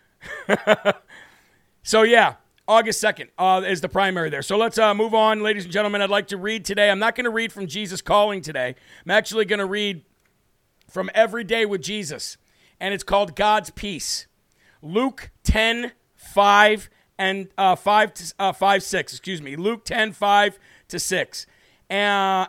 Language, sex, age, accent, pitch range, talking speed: English, male, 50-69, American, 185-215 Hz, 165 wpm